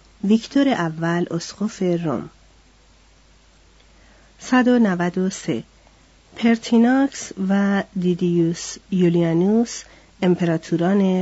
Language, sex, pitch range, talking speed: Persian, female, 160-215 Hz, 55 wpm